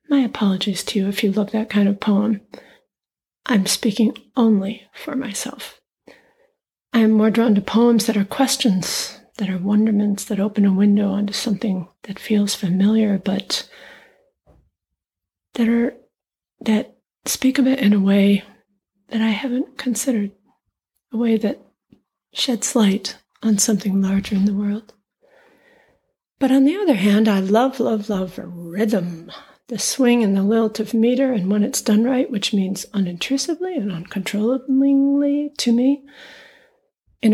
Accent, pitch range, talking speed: American, 200-245 Hz, 150 wpm